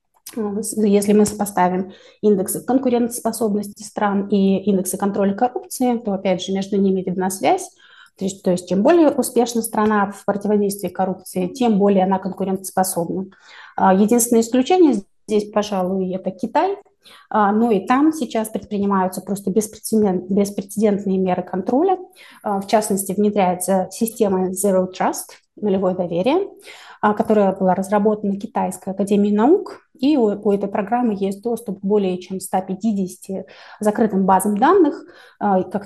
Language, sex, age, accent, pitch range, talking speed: Russian, female, 30-49, native, 190-225 Hz, 125 wpm